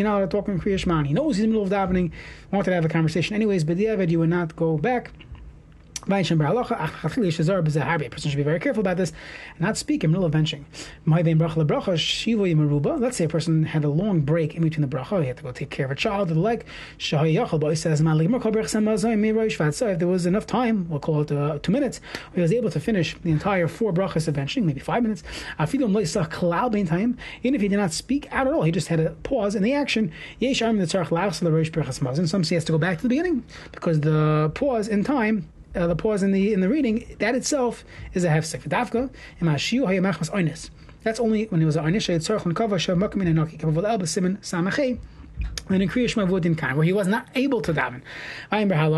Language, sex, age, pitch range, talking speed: English, male, 30-49, 160-215 Hz, 185 wpm